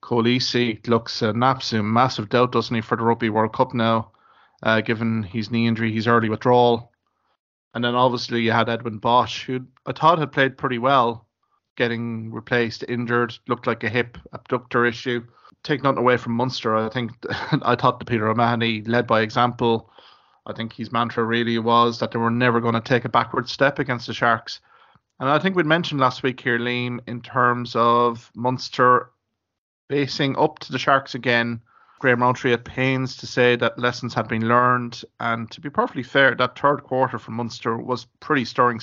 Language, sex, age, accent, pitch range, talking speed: English, male, 30-49, Irish, 115-125 Hz, 185 wpm